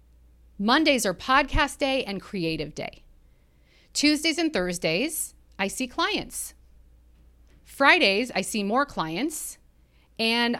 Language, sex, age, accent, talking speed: English, female, 40-59, American, 110 wpm